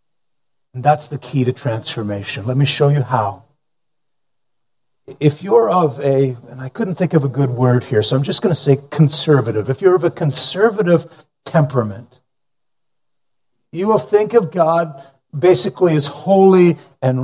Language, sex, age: English, male, 50-69